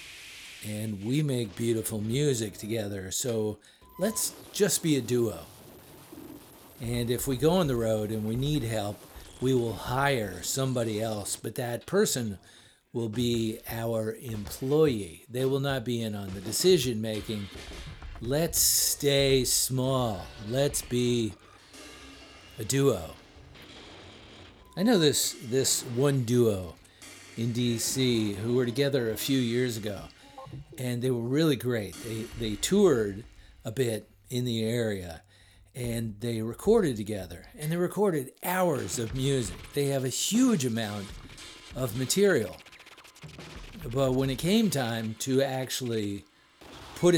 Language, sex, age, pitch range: English, male, 50-69, 110-135 Hz